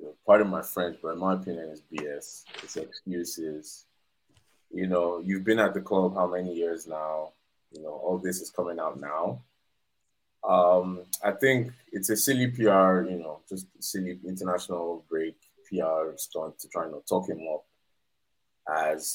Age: 20-39